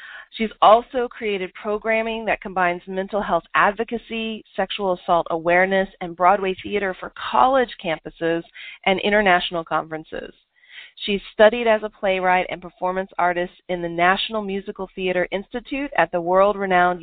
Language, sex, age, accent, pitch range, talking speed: English, female, 40-59, American, 180-225 Hz, 135 wpm